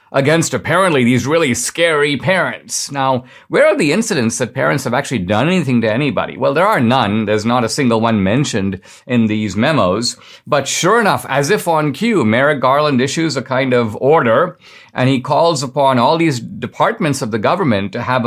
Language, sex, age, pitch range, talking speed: English, male, 50-69, 115-145 Hz, 190 wpm